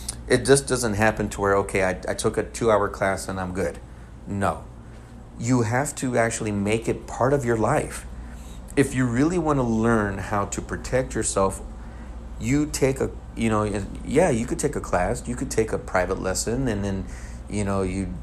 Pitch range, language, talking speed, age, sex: 75-125 Hz, English, 195 wpm, 30-49, male